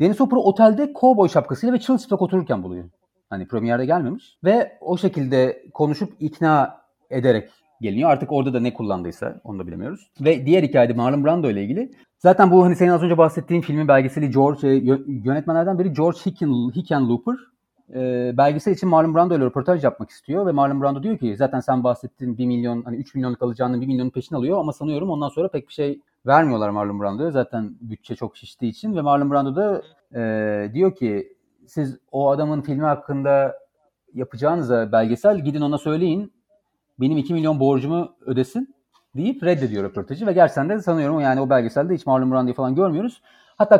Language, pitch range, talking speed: Turkish, 130-180 Hz, 175 wpm